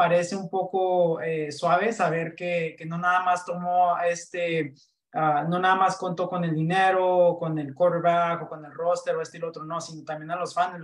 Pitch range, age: 165-185 Hz, 20-39